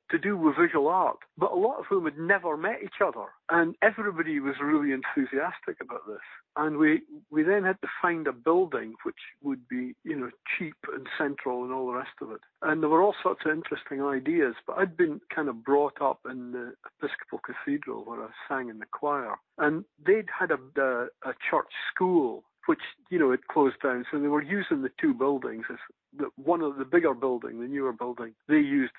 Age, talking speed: 60-79, 210 wpm